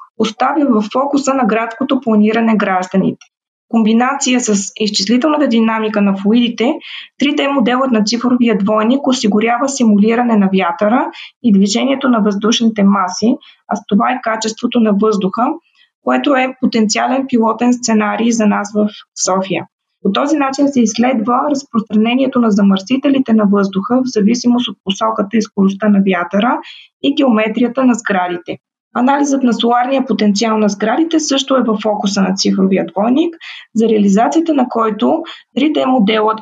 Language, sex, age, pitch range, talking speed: Bulgarian, female, 20-39, 210-260 Hz, 140 wpm